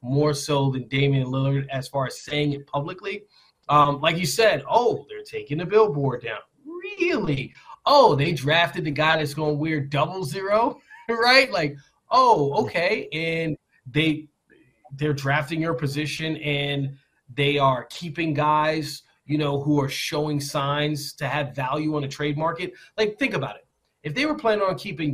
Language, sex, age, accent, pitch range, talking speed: English, male, 20-39, American, 145-215 Hz, 165 wpm